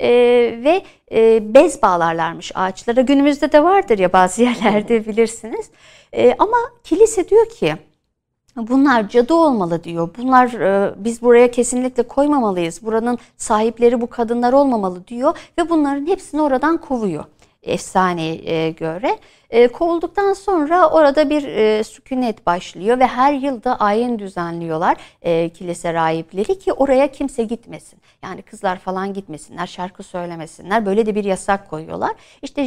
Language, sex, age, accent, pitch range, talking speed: Turkish, female, 60-79, native, 195-290 Hz, 120 wpm